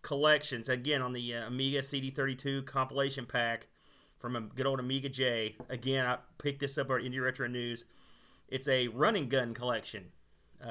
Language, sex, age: English, male, 30-49